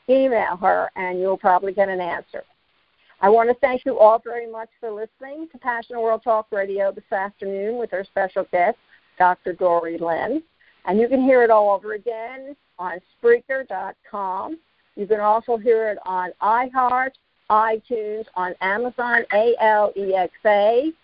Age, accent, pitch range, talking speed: 50-69, American, 200-260 Hz, 150 wpm